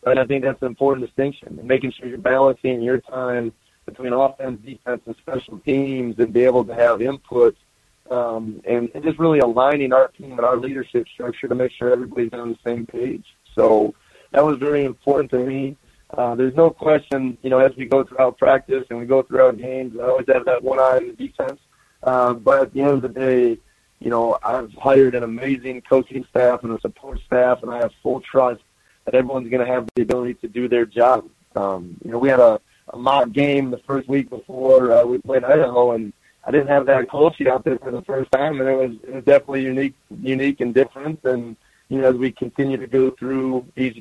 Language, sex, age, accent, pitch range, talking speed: English, male, 30-49, American, 120-135 Hz, 220 wpm